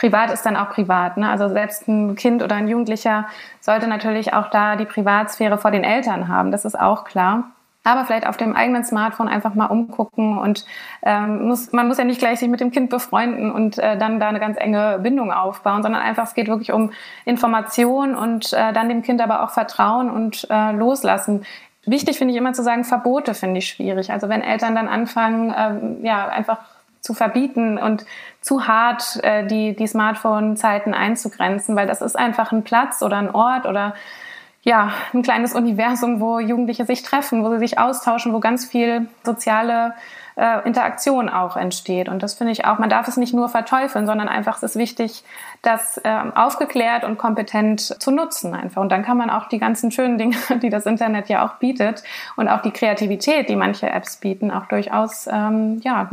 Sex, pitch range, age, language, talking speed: female, 210-240 Hz, 20-39, German, 190 wpm